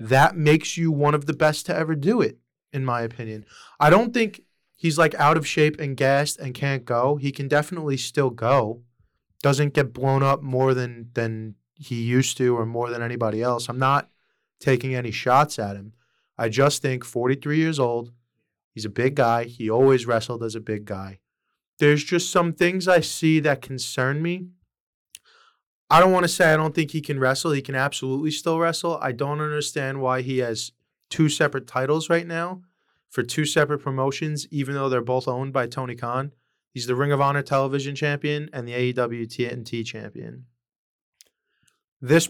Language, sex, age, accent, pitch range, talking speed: English, male, 20-39, American, 125-155 Hz, 185 wpm